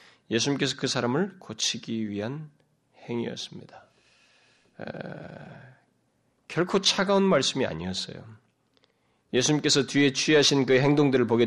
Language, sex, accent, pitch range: Korean, male, native, 145-225 Hz